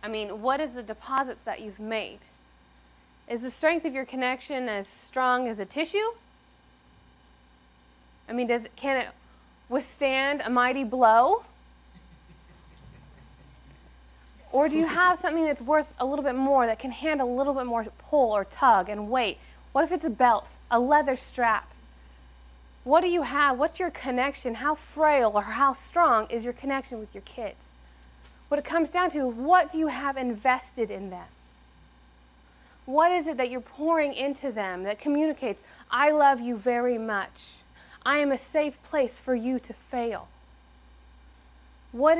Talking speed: 165 wpm